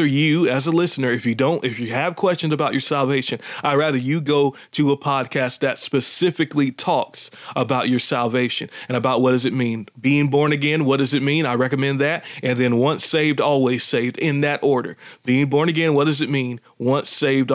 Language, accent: English, American